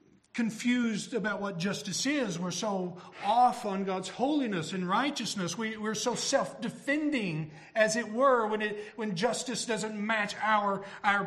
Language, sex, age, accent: English, male, 50-69, American